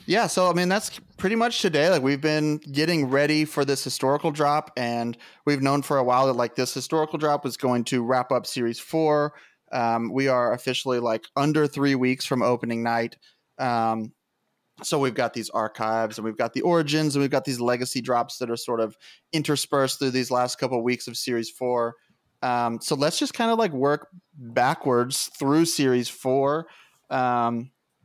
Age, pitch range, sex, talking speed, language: 30-49, 120-150 Hz, male, 190 wpm, English